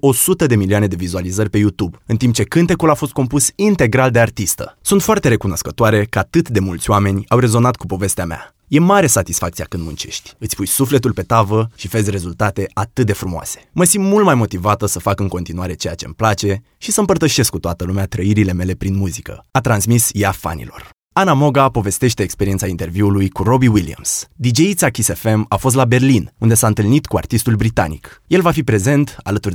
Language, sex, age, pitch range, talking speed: Romanian, male, 20-39, 95-140 Hz, 195 wpm